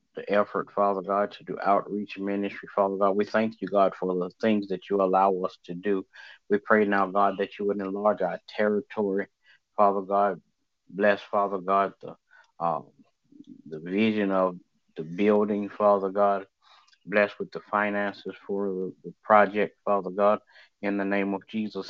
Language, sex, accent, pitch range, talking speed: English, male, American, 95-105 Hz, 165 wpm